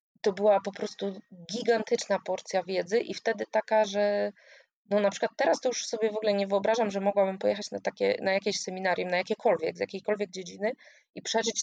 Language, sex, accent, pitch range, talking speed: Polish, female, native, 180-210 Hz, 185 wpm